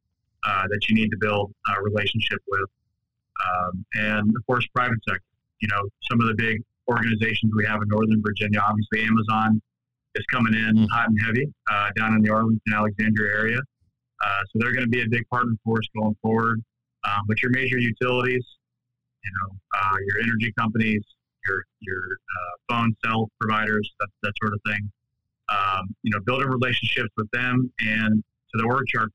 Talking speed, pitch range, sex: 185 wpm, 105-120 Hz, male